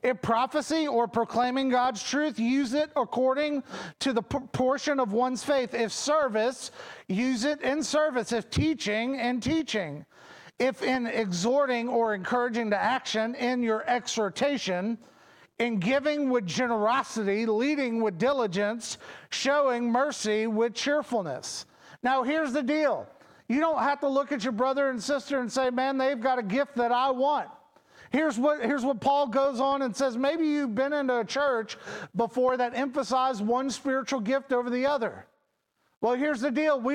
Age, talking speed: 40-59, 160 wpm